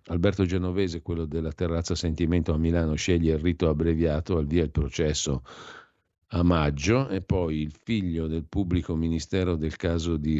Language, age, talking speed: Italian, 50-69, 160 wpm